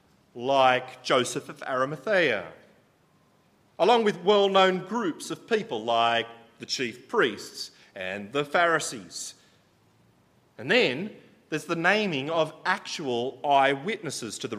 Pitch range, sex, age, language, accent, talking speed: 130-185 Hz, male, 40-59, English, Australian, 110 wpm